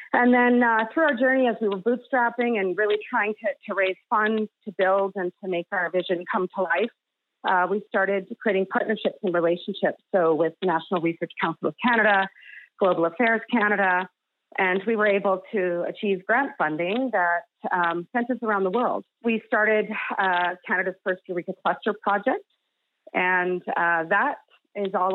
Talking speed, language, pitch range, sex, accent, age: 170 wpm, English, 175-220 Hz, female, American, 30-49